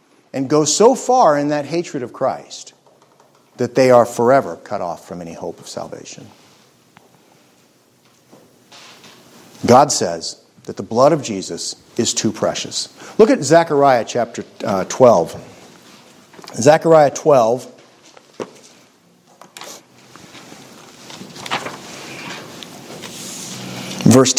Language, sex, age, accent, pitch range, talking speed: English, male, 50-69, American, 100-145 Hz, 95 wpm